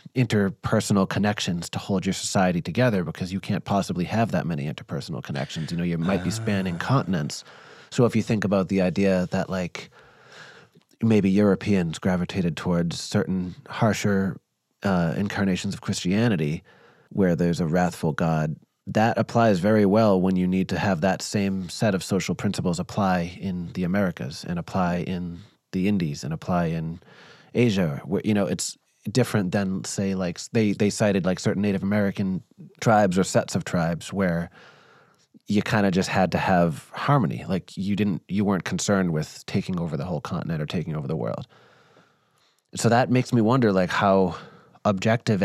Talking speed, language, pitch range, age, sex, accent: 170 wpm, English, 90-105 Hz, 30-49, male, American